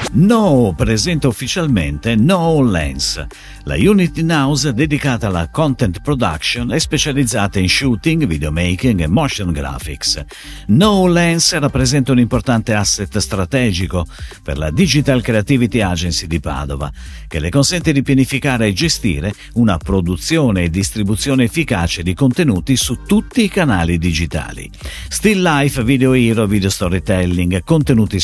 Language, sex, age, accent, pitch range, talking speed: Italian, male, 50-69, native, 90-150 Hz, 130 wpm